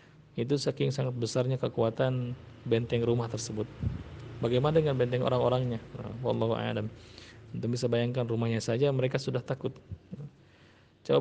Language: Malay